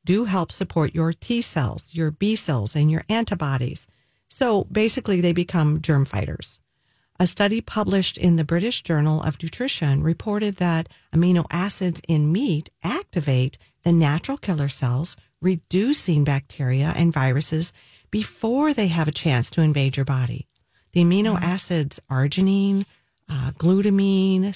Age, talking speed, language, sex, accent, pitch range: 50-69, 140 wpm, English, female, American, 145-195 Hz